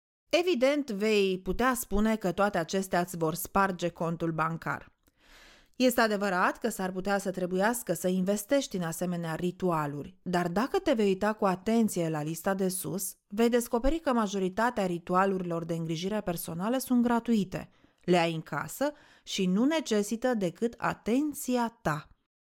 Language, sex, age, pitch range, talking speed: English, female, 30-49, 185-255 Hz, 145 wpm